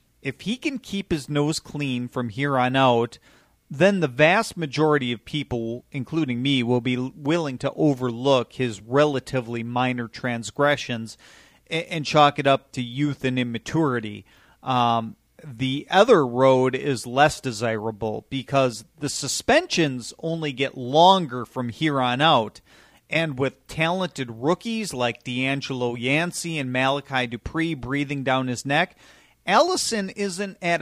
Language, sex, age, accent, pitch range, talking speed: English, male, 40-59, American, 120-150 Hz, 135 wpm